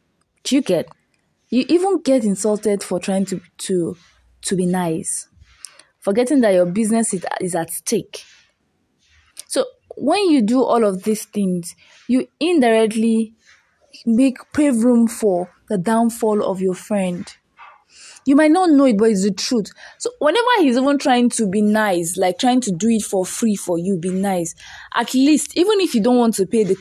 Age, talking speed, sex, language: 20-39, 170 wpm, female, English